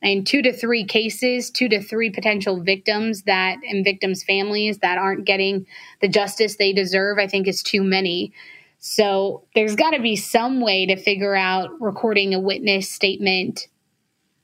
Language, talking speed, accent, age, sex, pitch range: English, 165 wpm, American, 20-39, female, 190-210 Hz